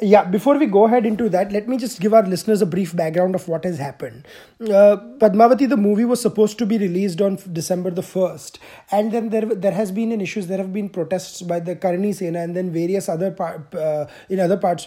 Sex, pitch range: male, 180-230 Hz